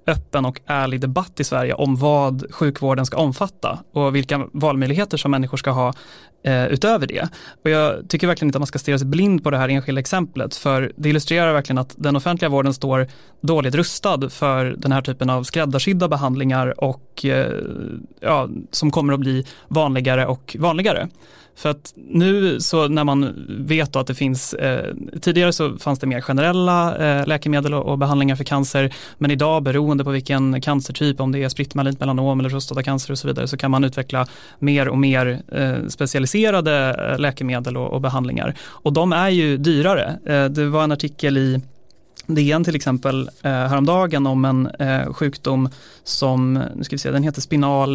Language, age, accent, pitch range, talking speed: Swedish, 30-49, native, 135-150 Hz, 180 wpm